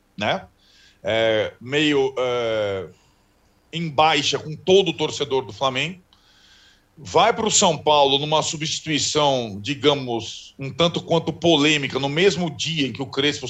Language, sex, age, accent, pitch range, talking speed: Portuguese, male, 40-59, Brazilian, 120-165 Hz, 130 wpm